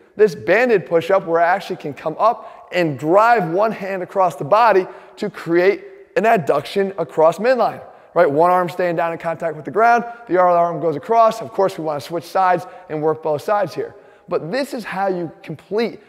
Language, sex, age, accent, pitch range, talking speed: English, male, 20-39, American, 165-205 Hz, 210 wpm